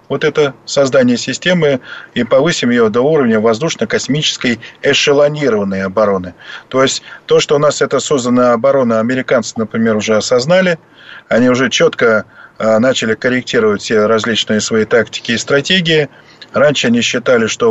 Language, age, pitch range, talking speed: Russian, 20-39, 110-160 Hz, 135 wpm